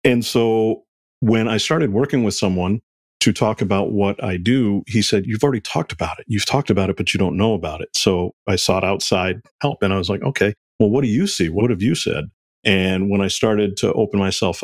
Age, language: 40-59, English